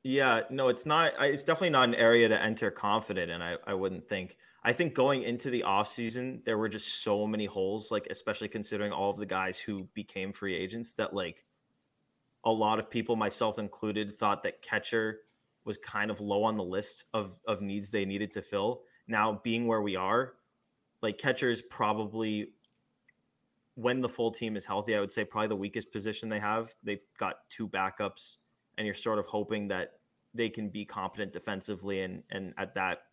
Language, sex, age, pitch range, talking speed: English, male, 20-39, 100-115 Hz, 195 wpm